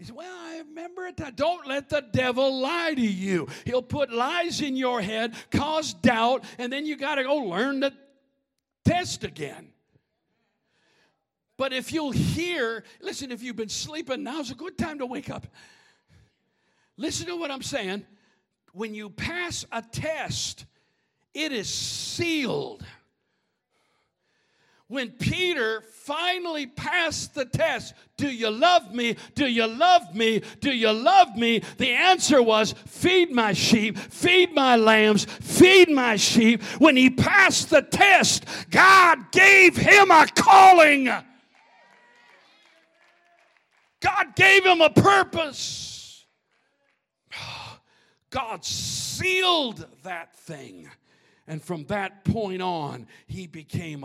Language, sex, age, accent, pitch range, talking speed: English, male, 50-69, American, 205-320 Hz, 130 wpm